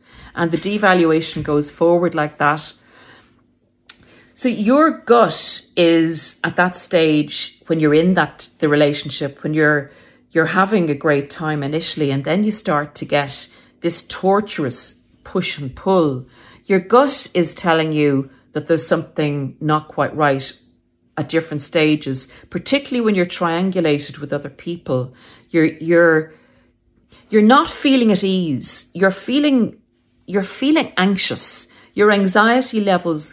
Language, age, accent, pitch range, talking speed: English, 50-69, Irish, 150-200 Hz, 135 wpm